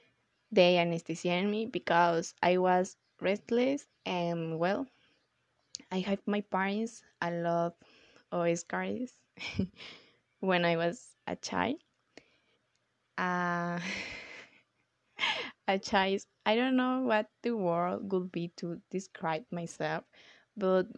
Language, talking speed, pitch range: English, 110 wpm, 170-210 Hz